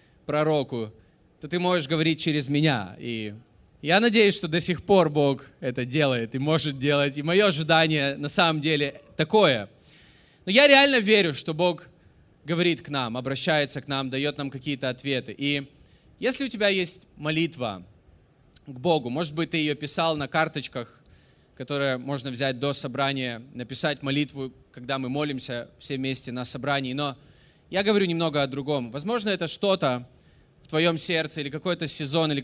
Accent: native